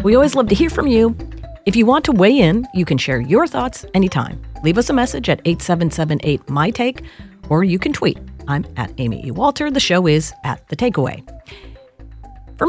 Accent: American